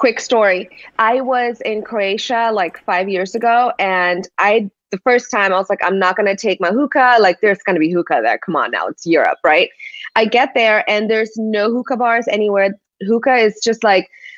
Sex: female